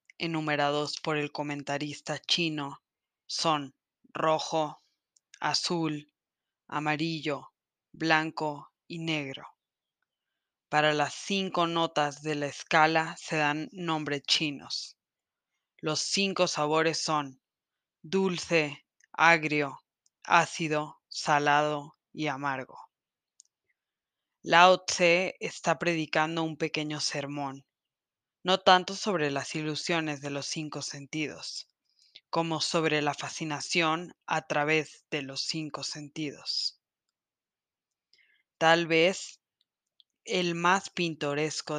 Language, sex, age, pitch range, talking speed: Spanish, female, 20-39, 145-165 Hz, 90 wpm